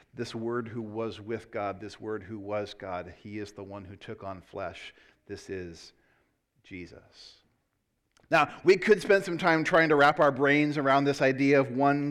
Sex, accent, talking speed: male, American, 190 wpm